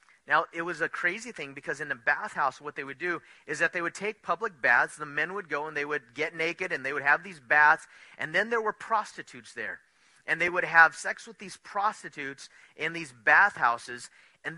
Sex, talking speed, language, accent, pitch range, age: male, 220 wpm, English, American, 125-190 Hz, 30-49